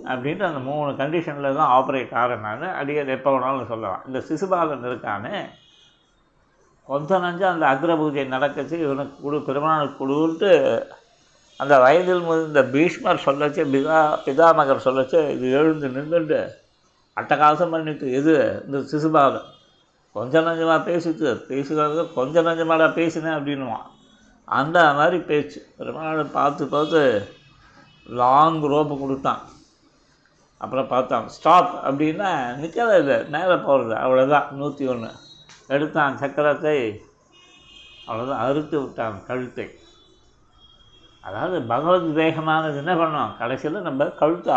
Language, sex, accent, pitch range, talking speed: Tamil, male, native, 140-160 Hz, 110 wpm